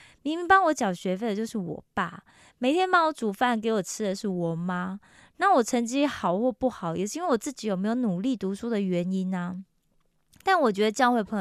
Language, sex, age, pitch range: Korean, female, 20-39, 185-255 Hz